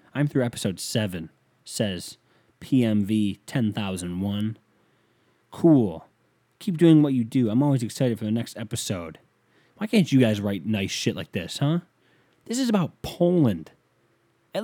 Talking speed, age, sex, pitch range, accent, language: 150 wpm, 20-39, male, 110-170 Hz, American, English